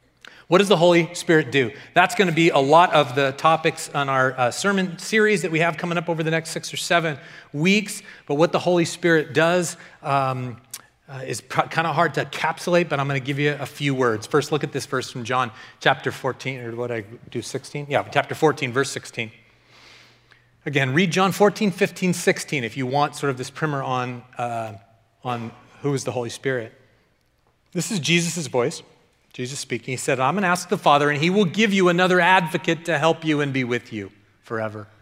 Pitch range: 130-185 Hz